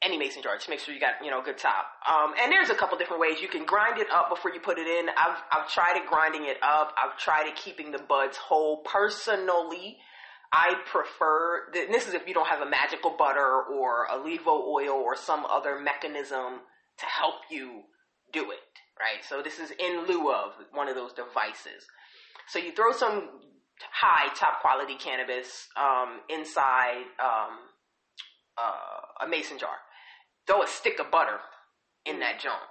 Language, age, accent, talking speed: English, 20-39, American, 190 wpm